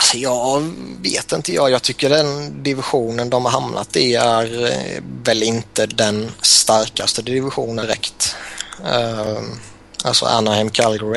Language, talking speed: Swedish, 120 wpm